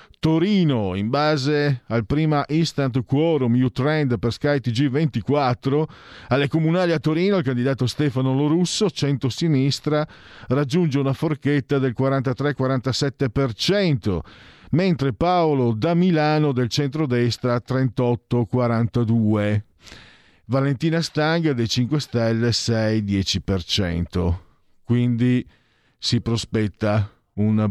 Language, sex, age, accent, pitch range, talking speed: Italian, male, 50-69, native, 95-140 Hz, 95 wpm